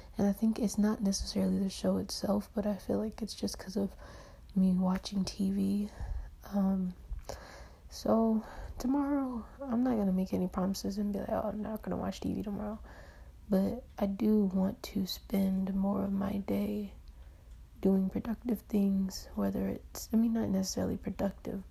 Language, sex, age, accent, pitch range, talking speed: English, female, 20-39, American, 190-215 Hz, 165 wpm